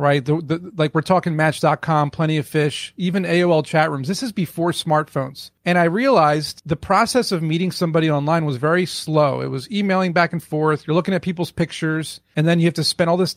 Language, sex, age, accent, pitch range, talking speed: English, male, 30-49, American, 155-185 Hz, 210 wpm